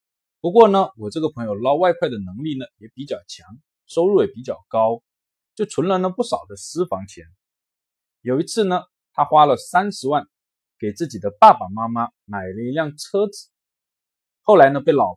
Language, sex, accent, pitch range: Chinese, male, native, 115-190 Hz